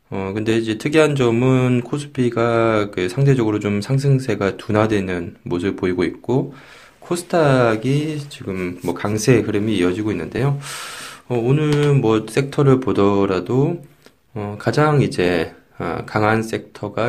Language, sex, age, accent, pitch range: Korean, male, 20-39, native, 95-130 Hz